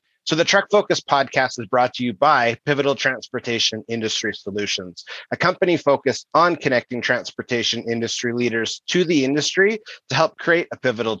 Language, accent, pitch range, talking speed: English, American, 120-150 Hz, 160 wpm